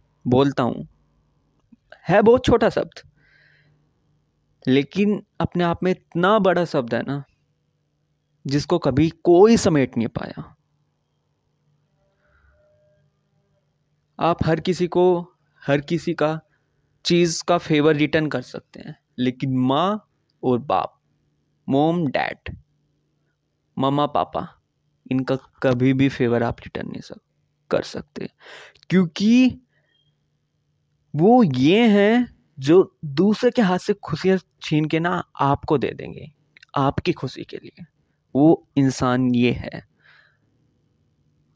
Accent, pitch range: native, 135-170 Hz